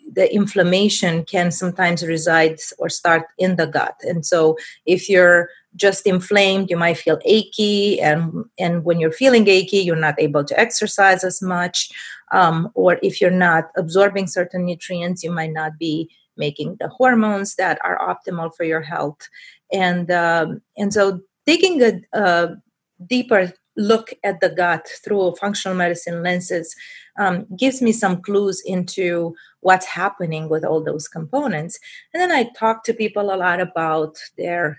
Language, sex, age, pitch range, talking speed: English, female, 30-49, 175-220 Hz, 160 wpm